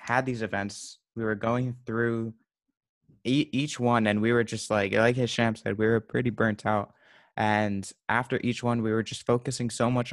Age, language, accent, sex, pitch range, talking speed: 20-39, English, American, male, 105-120 Hz, 195 wpm